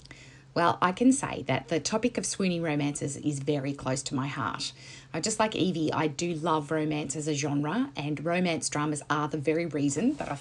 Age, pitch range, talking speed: 30-49, 145-180 Hz, 210 wpm